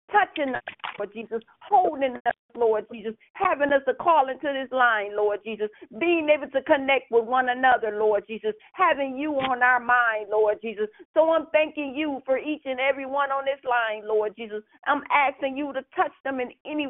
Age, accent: 40-59, American